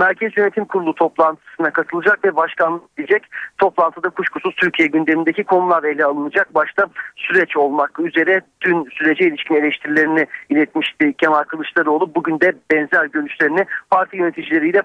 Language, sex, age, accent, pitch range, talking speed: Turkish, male, 50-69, native, 160-195 Hz, 130 wpm